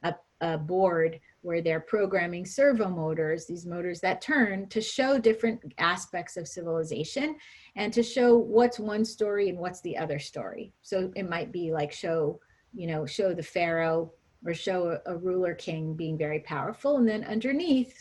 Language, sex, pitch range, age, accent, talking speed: English, female, 165-220 Hz, 30-49, American, 165 wpm